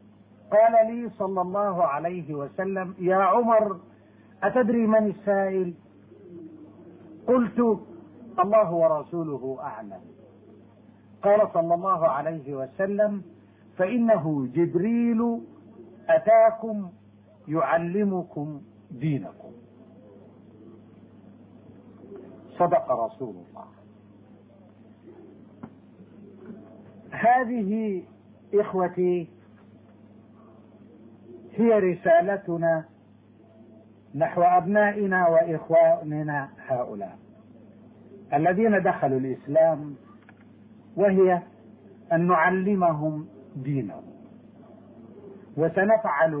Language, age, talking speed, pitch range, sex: Arabic, 50-69, 55 wpm, 140-210 Hz, male